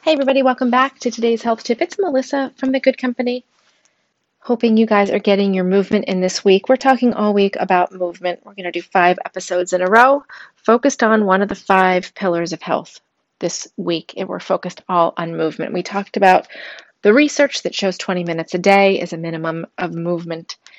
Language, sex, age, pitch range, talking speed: English, female, 30-49, 175-215 Hz, 210 wpm